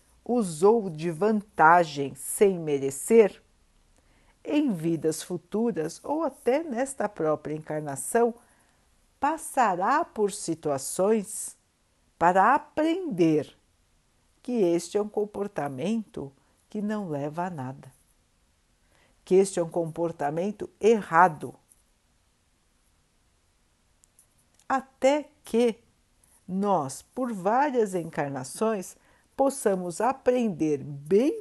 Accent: Brazilian